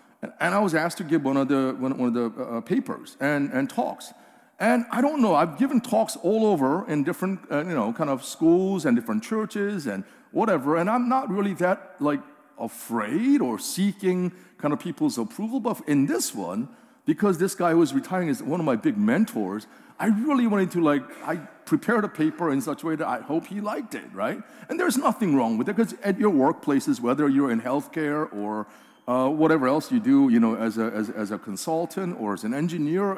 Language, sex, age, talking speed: English, male, 50-69, 220 wpm